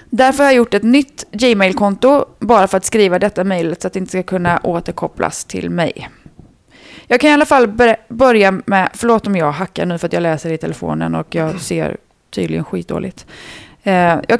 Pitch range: 180-235 Hz